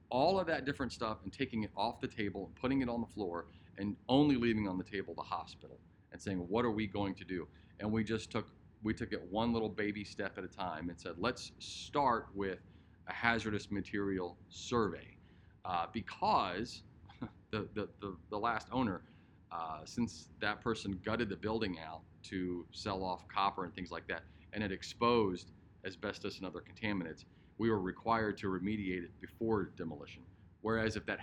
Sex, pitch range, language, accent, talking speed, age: male, 90-110 Hz, English, American, 190 wpm, 40-59